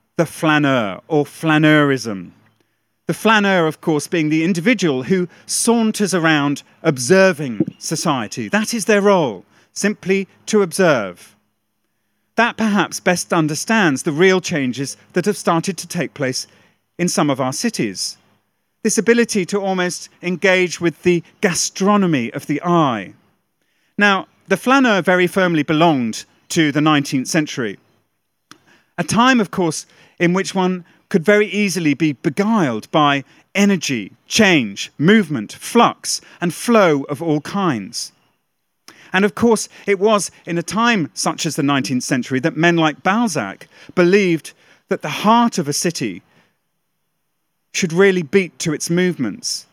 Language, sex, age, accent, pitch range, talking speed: English, male, 40-59, British, 150-195 Hz, 140 wpm